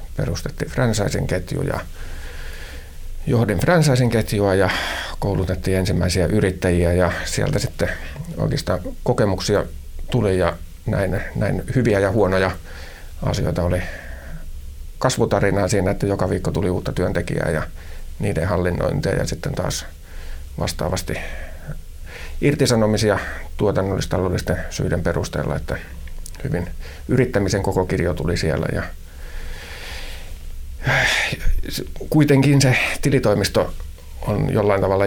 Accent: native